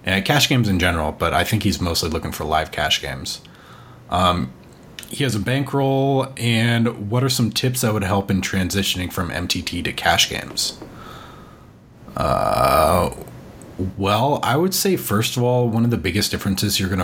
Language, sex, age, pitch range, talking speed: English, male, 30-49, 90-120 Hz, 175 wpm